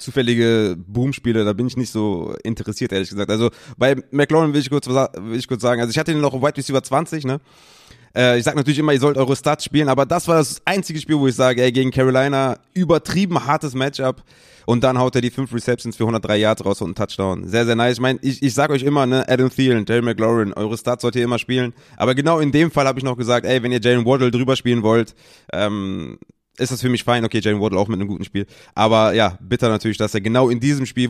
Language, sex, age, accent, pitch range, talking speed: German, male, 20-39, German, 110-135 Hz, 250 wpm